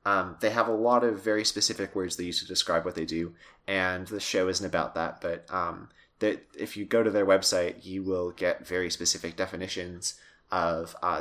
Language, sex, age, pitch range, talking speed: English, male, 30-49, 90-110 Hz, 210 wpm